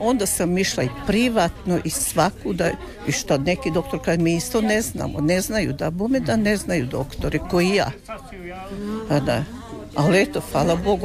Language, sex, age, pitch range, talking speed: Croatian, female, 60-79, 155-200 Hz, 170 wpm